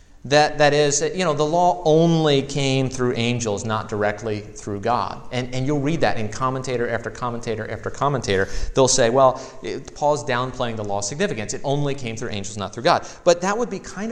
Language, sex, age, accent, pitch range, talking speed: English, male, 30-49, American, 115-160 Hz, 200 wpm